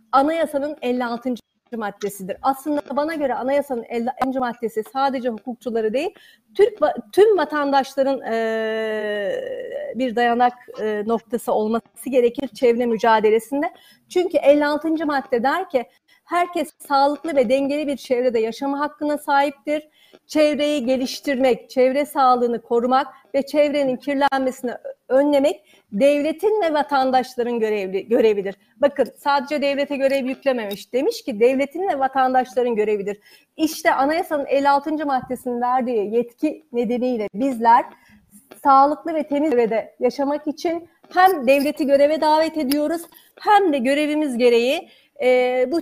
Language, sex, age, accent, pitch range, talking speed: Turkish, female, 40-59, native, 240-295 Hz, 110 wpm